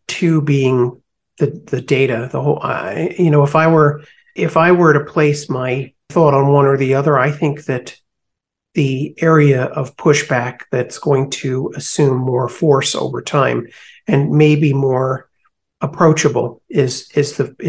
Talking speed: 165 wpm